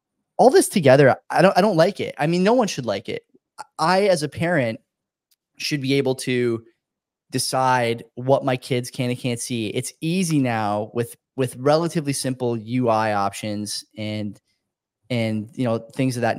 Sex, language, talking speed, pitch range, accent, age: male, English, 175 wpm, 115-140 Hz, American, 10-29